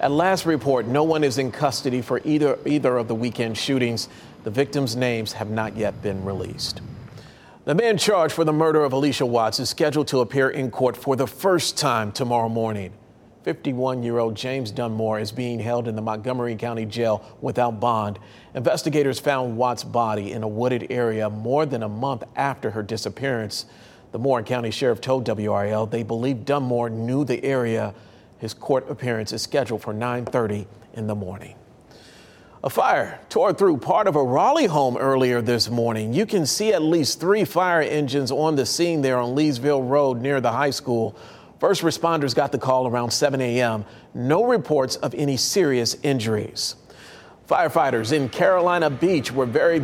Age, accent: 40-59, American